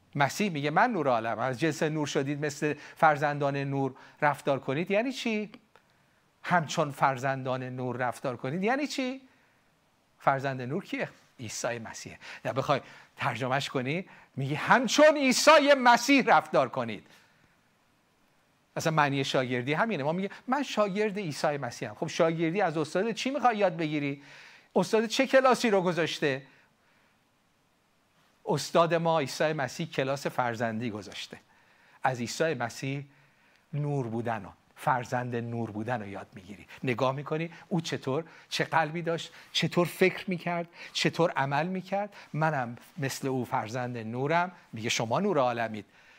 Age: 50-69